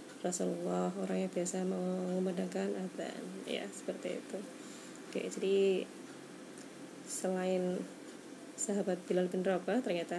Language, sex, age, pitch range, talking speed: Indonesian, female, 20-39, 185-295 Hz, 100 wpm